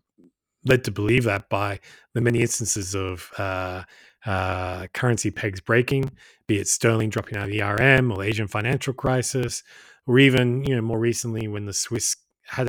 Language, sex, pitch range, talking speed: English, male, 100-120 Hz, 170 wpm